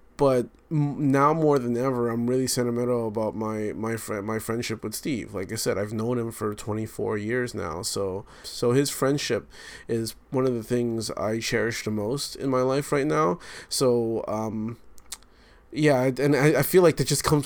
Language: English